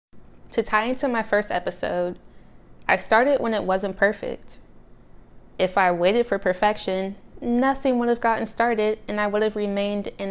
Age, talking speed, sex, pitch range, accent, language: 20-39, 165 wpm, female, 185-215 Hz, American, English